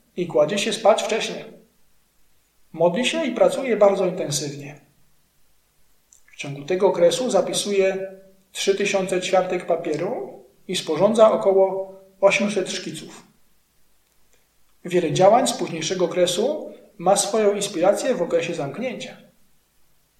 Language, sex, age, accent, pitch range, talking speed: Polish, male, 40-59, native, 165-210 Hz, 105 wpm